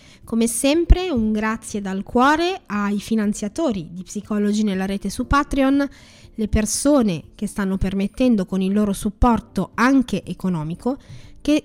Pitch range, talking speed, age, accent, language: 185-255 Hz, 135 wpm, 20-39, native, Italian